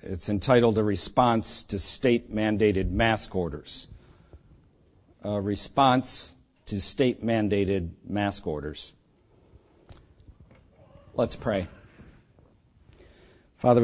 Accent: American